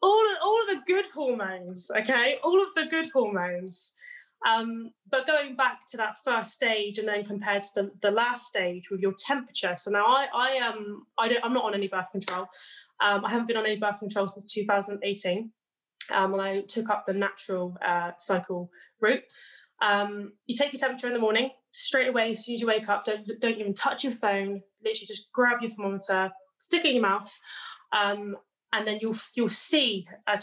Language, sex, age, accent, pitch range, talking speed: English, female, 10-29, British, 195-235 Hz, 205 wpm